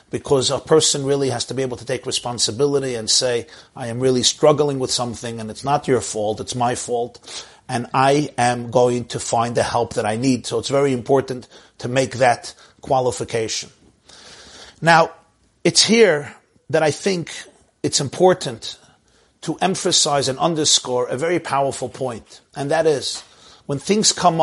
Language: English